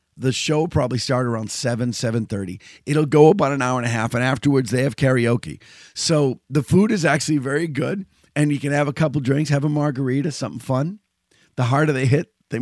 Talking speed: 215 wpm